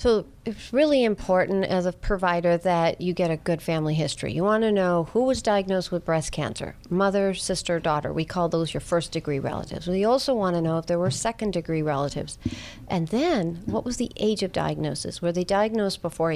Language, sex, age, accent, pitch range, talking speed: English, female, 50-69, American, 160-195 Hz, 200 wpm